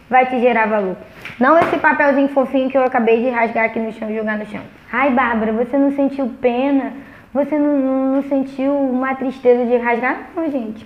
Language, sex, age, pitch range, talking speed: Portuguese, female, 20-39, 235-285 Hz, 195 wpm